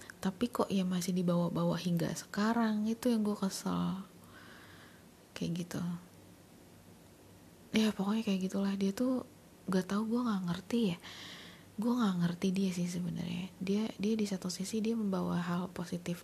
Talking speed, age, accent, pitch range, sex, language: 150 wpm, 20-39, native, 175-205 Hz, female, Indonesian